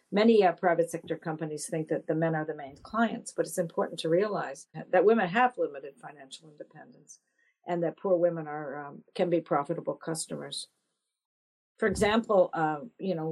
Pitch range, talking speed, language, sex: 155-185 Hz, 175 wpm, English, female